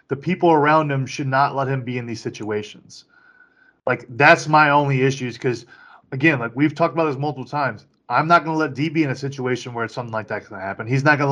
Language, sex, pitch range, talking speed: English, male, 115-140 Hz, 240 wpm